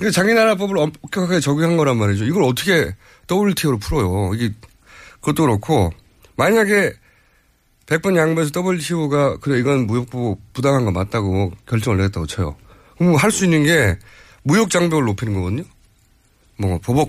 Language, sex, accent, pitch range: Korean, male, native, 105-175 Hz